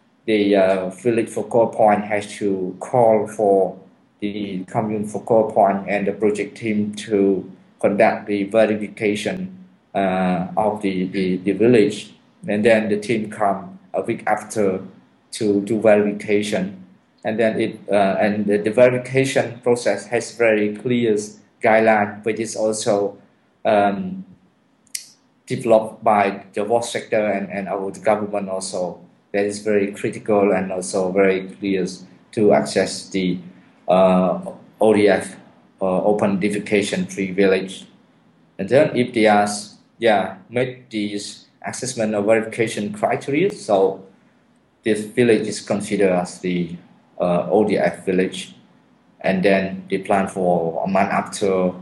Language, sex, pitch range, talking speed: English, male, 95-110 Hz, 130 wpm